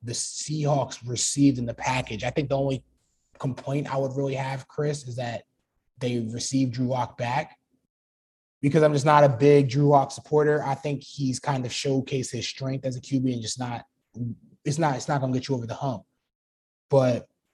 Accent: American